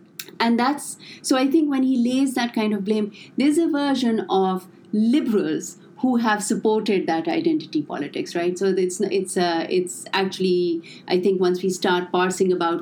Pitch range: 175-265 Hz